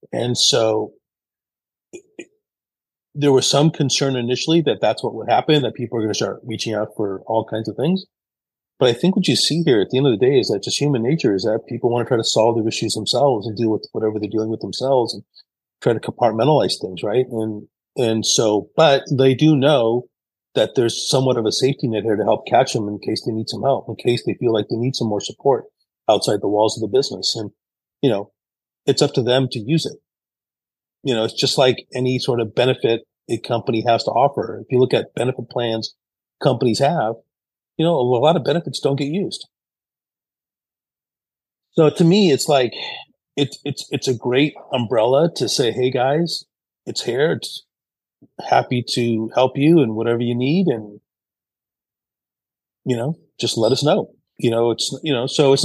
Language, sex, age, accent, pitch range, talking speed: English, male, 30-49, American, 115-145 Hz, 205 wpm